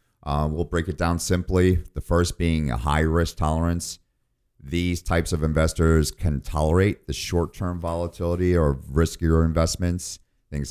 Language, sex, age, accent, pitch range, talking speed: English, male, 50-69, American, 75-90 Hz, 140 wpm